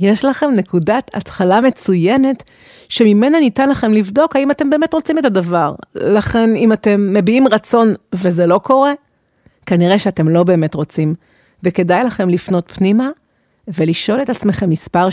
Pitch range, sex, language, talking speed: 175-235 Hz, female, Hebrew, 145 wpm